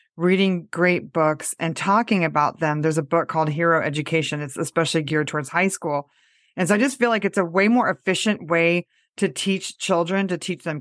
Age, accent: 30-49, American